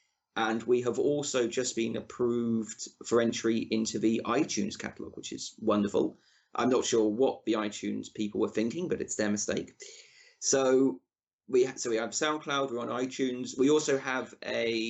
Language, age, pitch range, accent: English, 30-49, 110-130 Hz, British